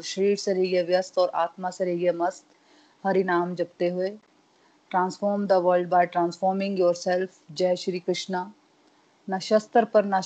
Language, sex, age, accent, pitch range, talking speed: Hindi, female, 30-49, native, 175-200 Hz, 170 wpm